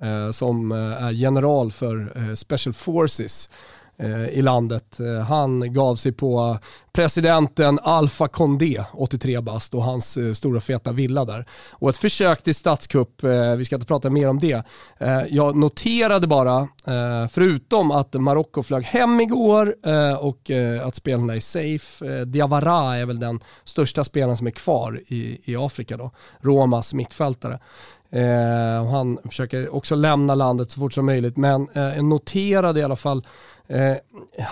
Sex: male